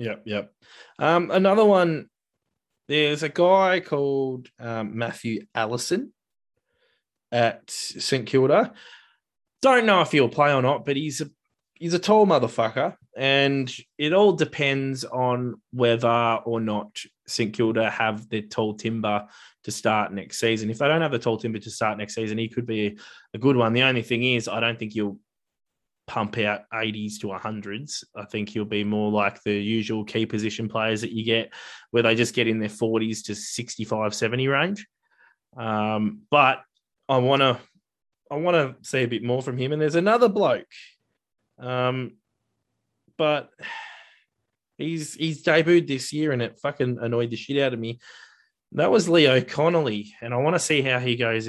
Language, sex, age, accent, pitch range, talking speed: English, male, 20-39, Australian, 110-145 Hz, 170 wpm